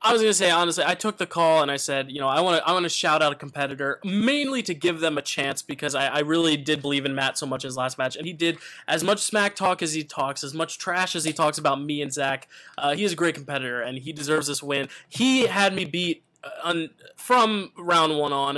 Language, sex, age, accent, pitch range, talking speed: English, male, 20-39, American, 140-165 Hz, 275 wpm